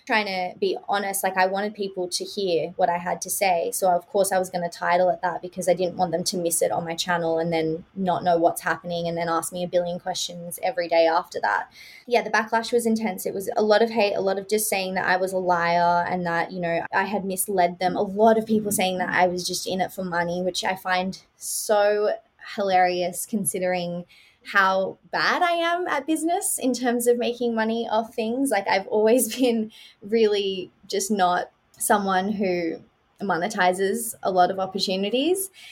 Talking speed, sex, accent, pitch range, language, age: 215 wpm, female, Australian, 180-215 Hz, English, 20-39